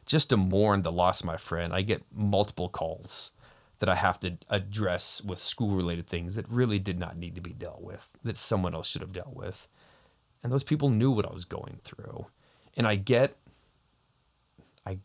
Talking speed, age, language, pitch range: 200 wpm, 30-49, English, 90-110 Hz